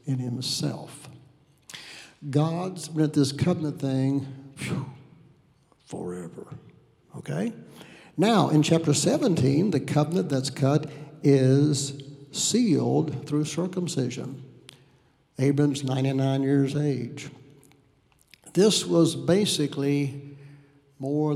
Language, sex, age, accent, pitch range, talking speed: English, male, 60-79, American, 135-155 Hz, 80 wpm